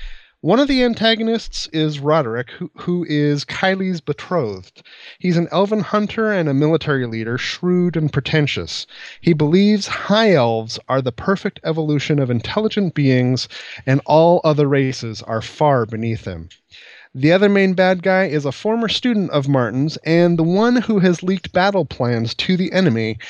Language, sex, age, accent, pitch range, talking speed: English, male, 30-49, American, 125-180 Hz, 160 wpm